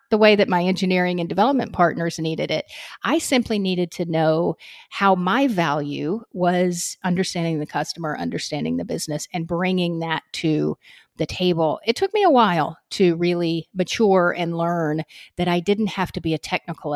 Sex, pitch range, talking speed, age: female, 170-220 Hz, 175 wpm, 40-59